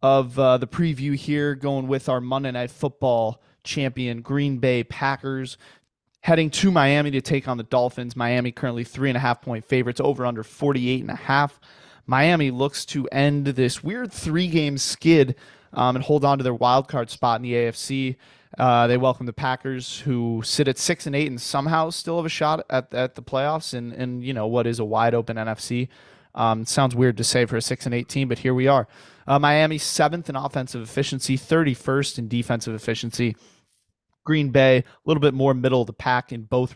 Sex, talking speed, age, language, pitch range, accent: male, 205 wpm, 20-39, English, 120-140 Hz, American